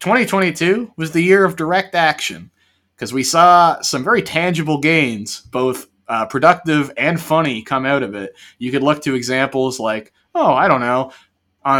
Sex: male